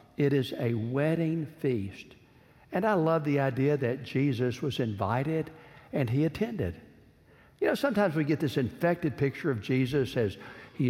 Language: English